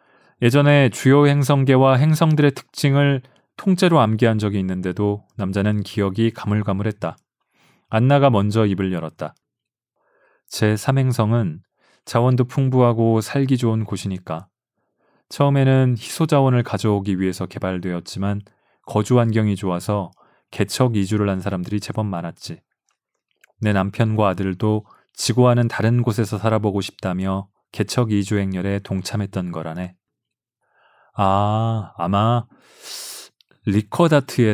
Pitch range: 100-125 Hz